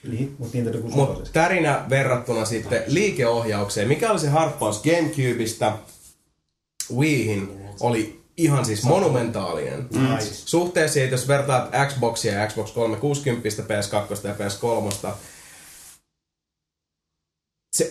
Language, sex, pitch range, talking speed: Finnish, male, 100-125 Hz, 85 wpm